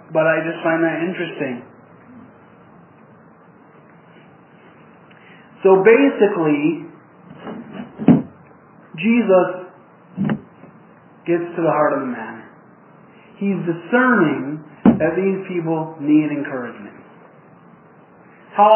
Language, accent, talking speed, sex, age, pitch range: English, American, 75 wpm, male, 40-59, 150-195 Hz